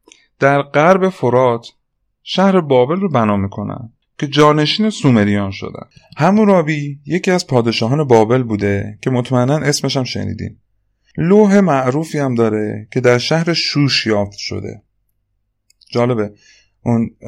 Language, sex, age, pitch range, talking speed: Persian, male, 30-49, 105-145 Hz, 120 wpm